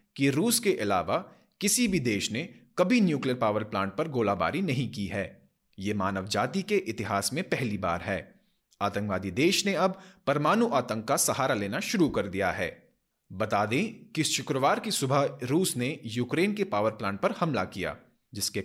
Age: 30-49